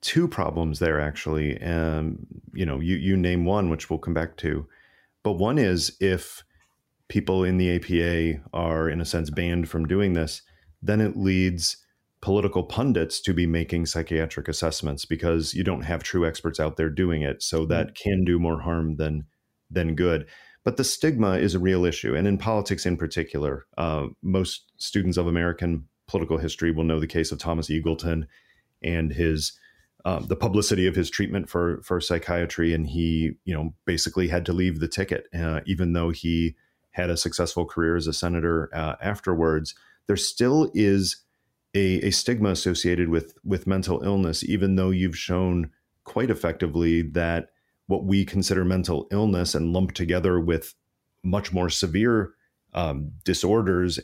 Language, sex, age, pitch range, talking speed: English, male, 30-49, 80-95 Hz, 170 wpm